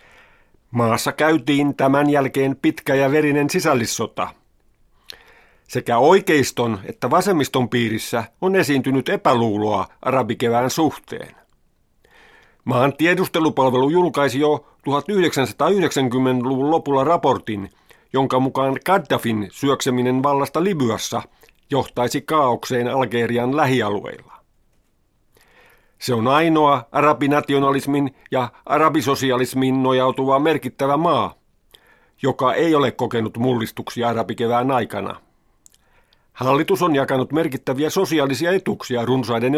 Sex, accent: male, native